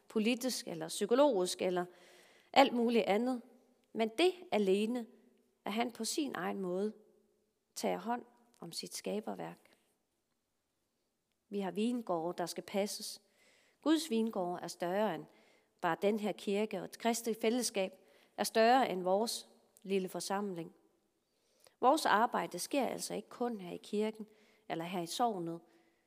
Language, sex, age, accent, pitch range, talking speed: Danish, female, 30-49, native, 175-225 Hz, 135 wpm